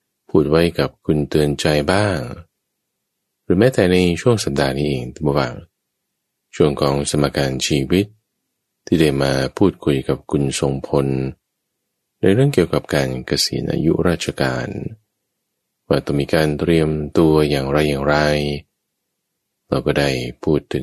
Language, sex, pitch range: English, male, 70-85 Hz